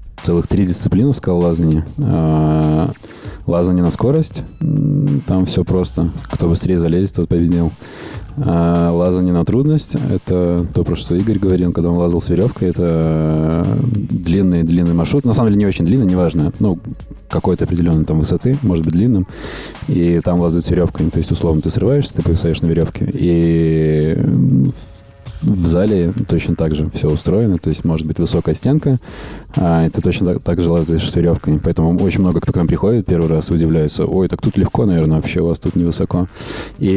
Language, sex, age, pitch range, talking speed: Russian, male, 20-39, 85-95 Hz, 170 wpm